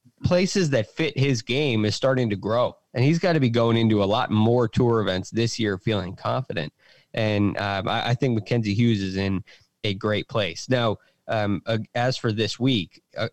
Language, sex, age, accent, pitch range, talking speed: English, male, 20-39, American, 110-140 Hz, 205 wpm